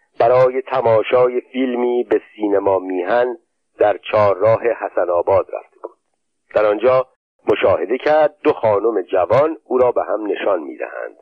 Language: Persian